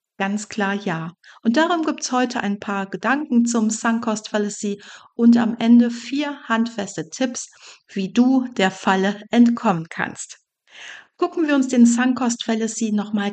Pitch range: 200-245 Hz